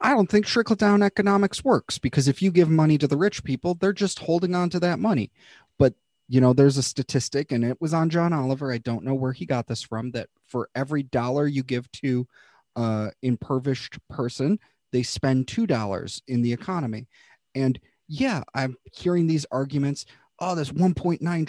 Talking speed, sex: 185 wpm, male